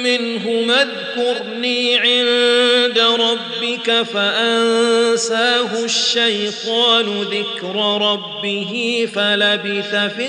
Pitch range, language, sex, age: 210-245 Hz, Arabic, male, 40-59